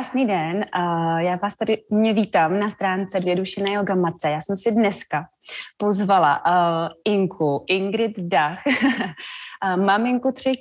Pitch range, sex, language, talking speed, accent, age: 180-220 Hz, female, Czech, 125 wpm, native, 20-39